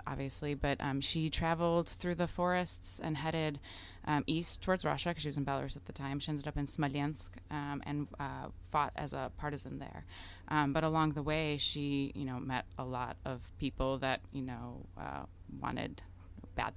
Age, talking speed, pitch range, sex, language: 20-39, 195 wpm, 120-145 Hz, female, English